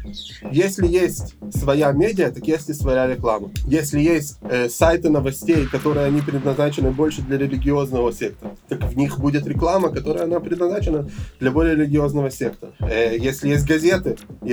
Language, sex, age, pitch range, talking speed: Russian, male, 20-39, 130-155 Hz, 155 wpm